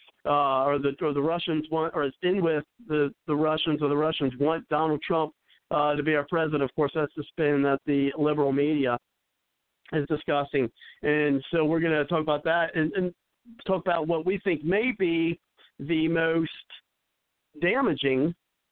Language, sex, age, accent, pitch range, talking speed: English, male, 50-69, American, 145-170 Hz, 175 wpm